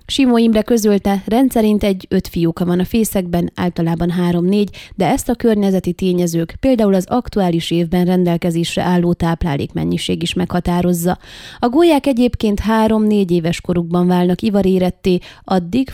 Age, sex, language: 20-39, female, Hungarian